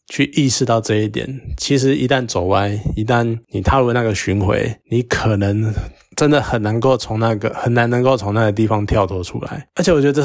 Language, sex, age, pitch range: Chinese, male, 20-39, 105-130 Hz